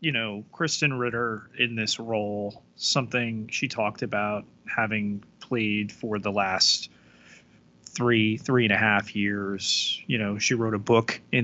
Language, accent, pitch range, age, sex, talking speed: English, American, 105-120 Hz, 30-49, male, 150 wpm